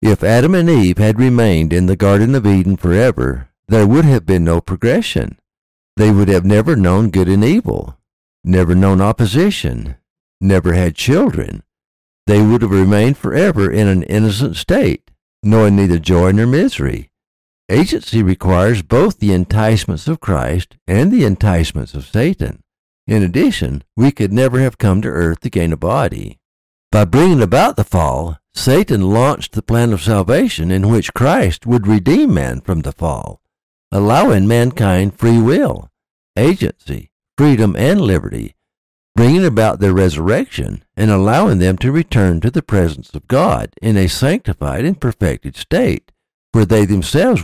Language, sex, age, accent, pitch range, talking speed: English, male, 60-79, American, 90-115 Hz, 155 wpm